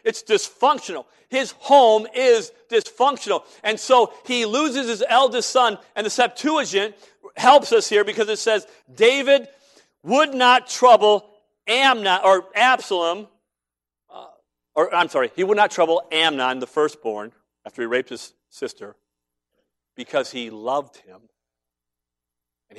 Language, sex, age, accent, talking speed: English, male, 50-69, American, 130 wpm